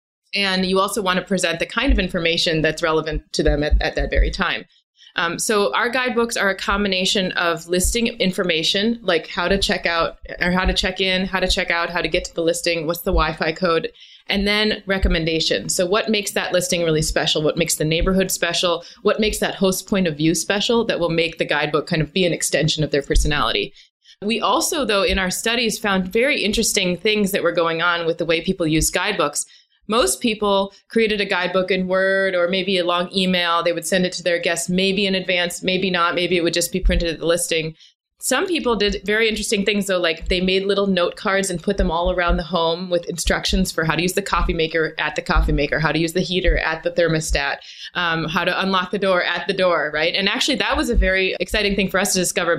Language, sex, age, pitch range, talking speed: English, female, 20-39, 170-195 Hz, 235 wpm